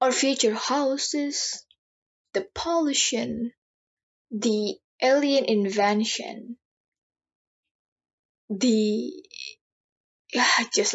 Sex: female